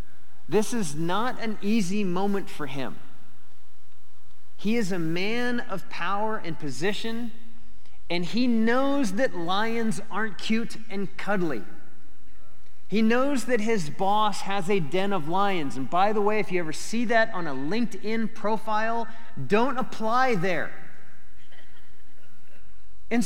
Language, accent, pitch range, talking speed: English, American, 170-225 Hz, 135 wpm